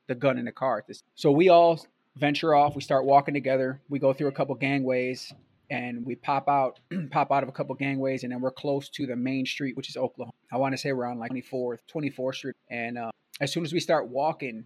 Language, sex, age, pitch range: English, male, 20-39, 130-150 Hz